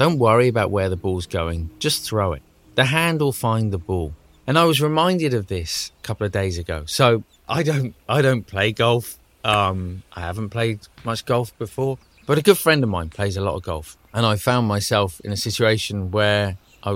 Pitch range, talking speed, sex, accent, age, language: 95-125 Hz, 210 wpm, male, British, 30-49, English